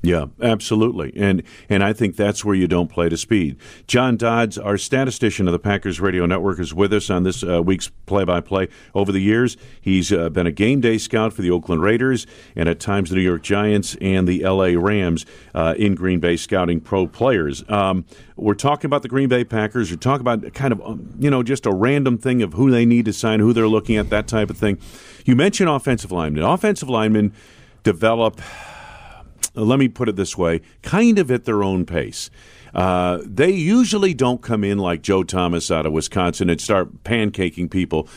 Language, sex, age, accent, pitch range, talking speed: English, male, 50-69, American, 90-115 Hz, 205 wpm